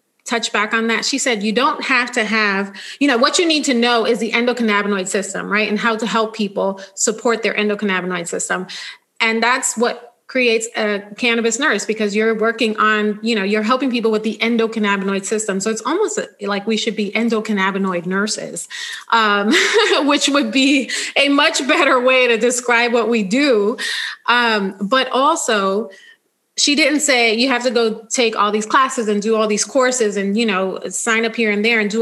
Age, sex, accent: 30-49, female, American